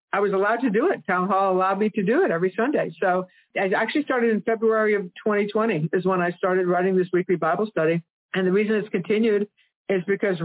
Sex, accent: female, American